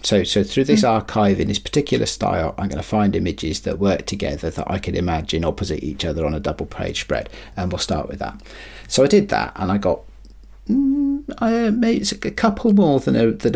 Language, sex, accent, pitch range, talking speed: English, male, British, 85-115 Hz, 220 wpm